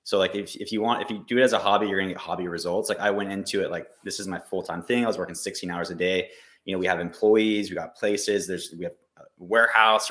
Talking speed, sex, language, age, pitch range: 295 wpm, male, English, 20-39, 95-115 Hz